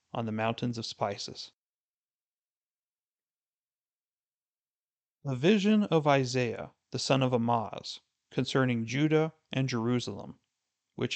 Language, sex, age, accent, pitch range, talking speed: English, male, 40-59, American, 120-150 Hz, 95 wpm